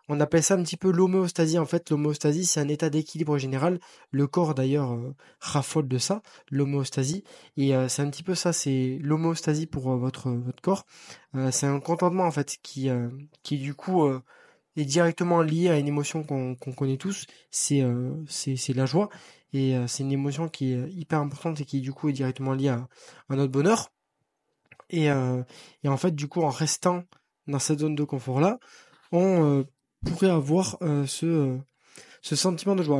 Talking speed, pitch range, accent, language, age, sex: 190 wpm, 140-175 Hz, French, French, 20-39, male